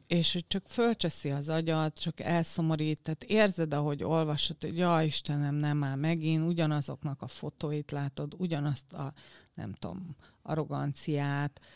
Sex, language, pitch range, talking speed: female, Hungarian, 140-165 Hz, 140 wpm